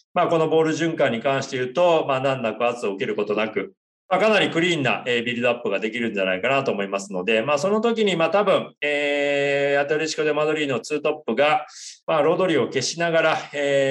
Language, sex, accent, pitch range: Japanese, male, native, 120-160 Hz